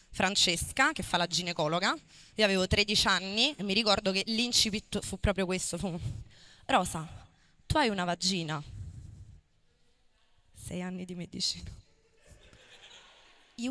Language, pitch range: Italian, 175-240 Hz